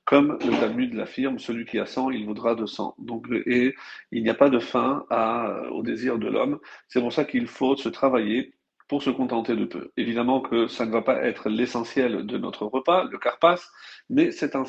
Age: 40-59